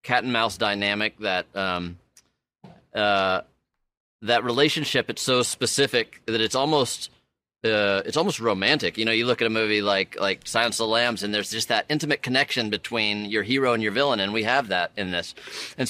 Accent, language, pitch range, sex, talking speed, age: American, English, 105-130 Hz, male, 185 wpm, 30-49